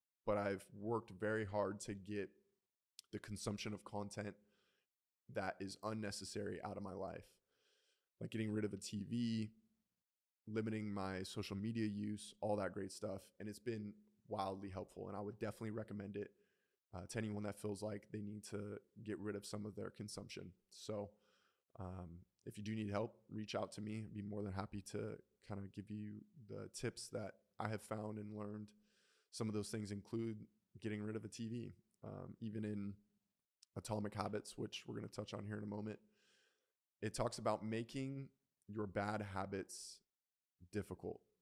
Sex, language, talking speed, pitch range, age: male, English, 175 wpm, 100-110 Hz, 20-39